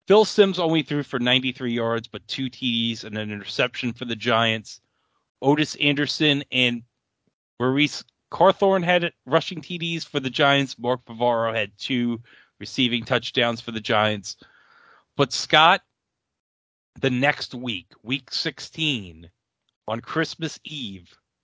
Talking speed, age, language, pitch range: 130 wpm, 30-49, English, 110-140 Hz